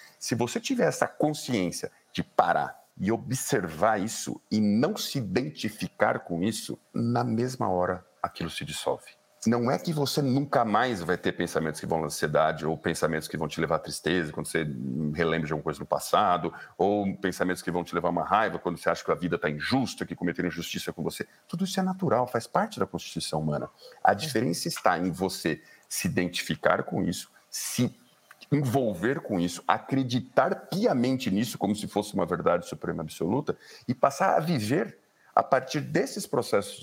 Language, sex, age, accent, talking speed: Portuguese, male, 50-69, Brazilian, 180 wpm